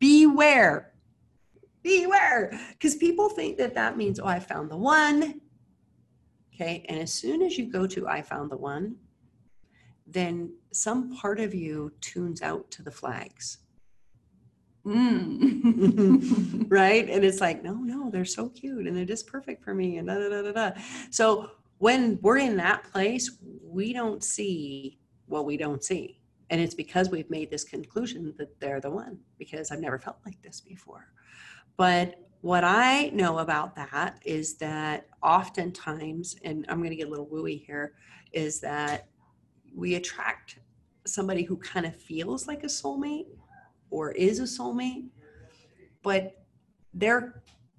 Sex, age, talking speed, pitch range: female, 40-59, 155 wpm, 155-230 Hz